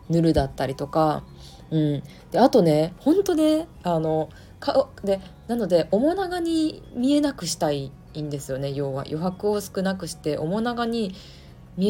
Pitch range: 150-225 Hz